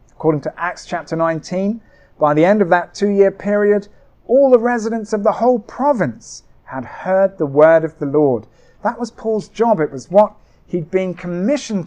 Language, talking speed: English, 180 wpm